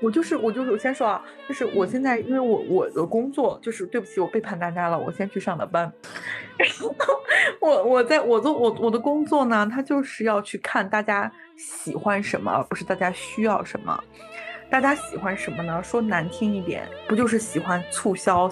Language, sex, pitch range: Chinese, female, 180-265 Hz